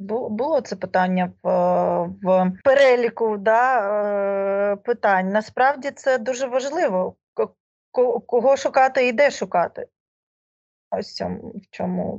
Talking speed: 105 wpm